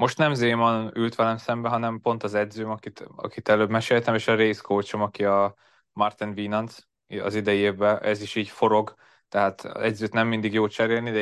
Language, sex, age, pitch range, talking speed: Hungarian, male, 20-39, 100-115 Hz, 195 wpm